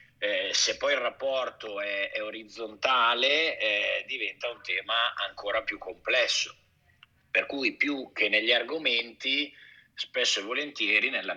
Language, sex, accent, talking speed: Italian, male, native, 130 wpm